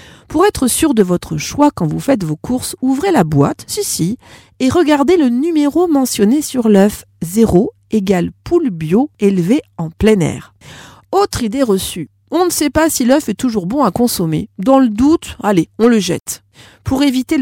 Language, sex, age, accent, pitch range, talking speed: French, female, 40-59, French, 175-280 Hz, 190 wpm